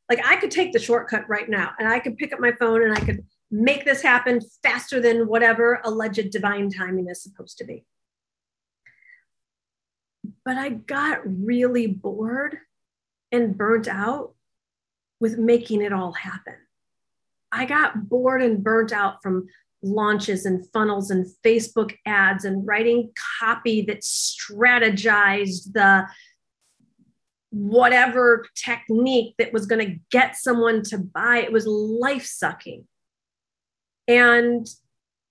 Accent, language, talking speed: American, English, 135 wpm